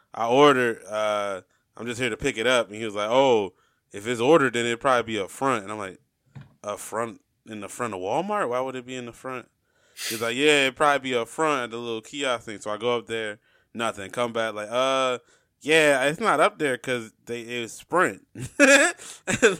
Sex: male